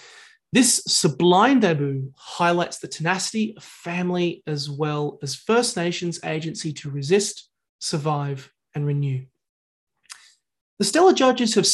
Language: English